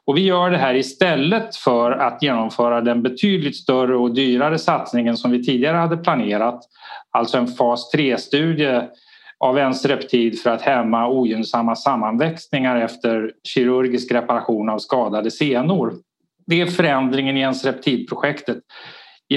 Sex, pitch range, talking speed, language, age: male, 120-160 Hz, 140 wpm, Swedish, 30-49